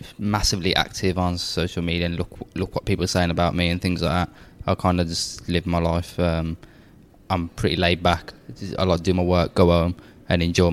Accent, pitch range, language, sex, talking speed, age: British, 85-100 Hz, English, male, 220 wpm, 20-39